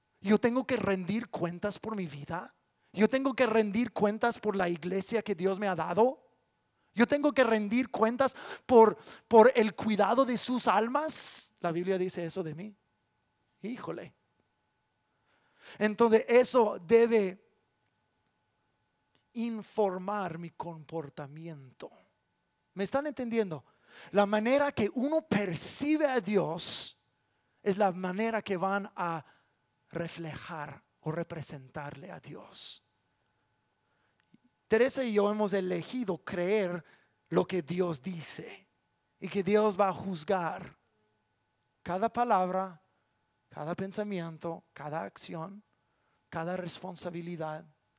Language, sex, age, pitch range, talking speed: English, male, 30-49, 165-220 Hz, 115 wpm